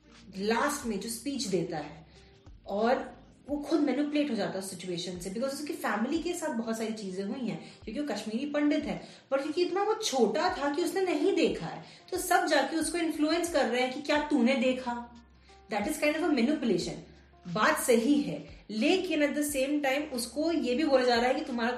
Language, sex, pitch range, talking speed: Hindi, female, 220-295 Hz, 210 wpm